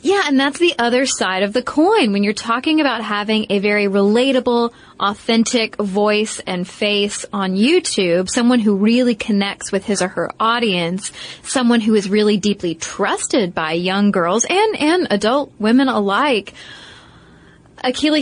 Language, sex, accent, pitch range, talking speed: English, female, American, 205-255 Hz, 155 wpm